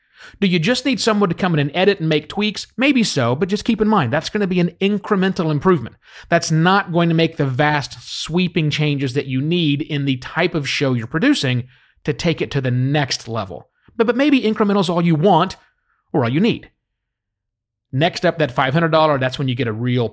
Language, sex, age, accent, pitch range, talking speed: English, male, 30-49, American, 125-185 Hz, 225 wpm